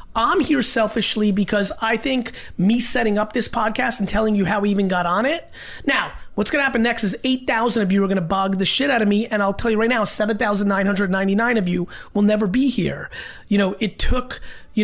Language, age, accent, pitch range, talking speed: English, 30-49, American, 180-225 Hz, 225 wpm